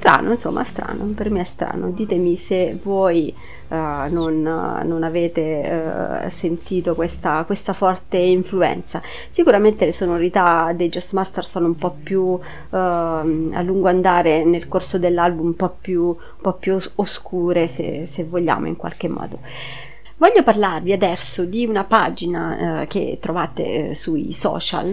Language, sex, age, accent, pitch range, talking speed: Italian, female, 30-49, native, 170-200 Hz, 135 wpm